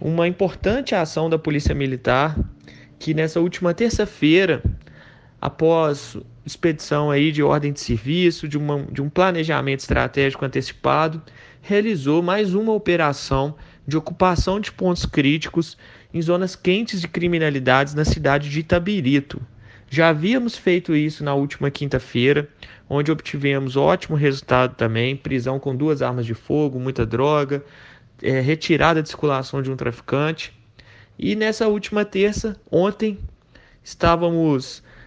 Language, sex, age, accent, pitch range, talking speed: Portuguese, male, 30-49, Brazilian, 140-180 Hz, 125 wpm